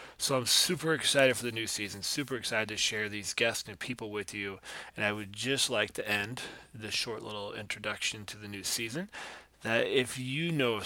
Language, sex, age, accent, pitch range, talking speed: English, male, 20-39, American, 100-120 Hz, 205 wpm